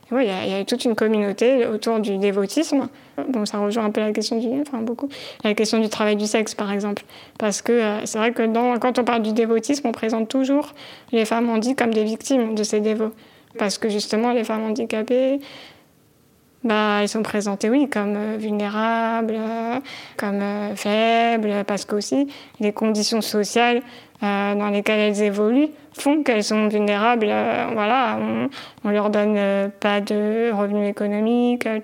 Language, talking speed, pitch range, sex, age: French, 175 wpm, 210-240 Hz, female, 20-39